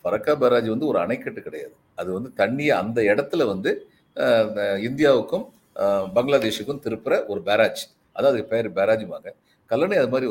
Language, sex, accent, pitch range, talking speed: Tamil, male, native, 115-175 Hz, 145 wpm